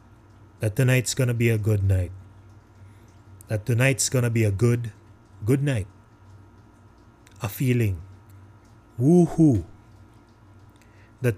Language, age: Filipino, 30-49